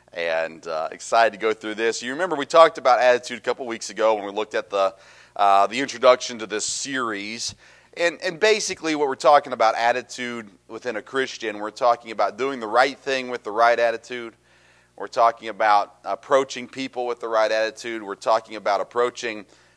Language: English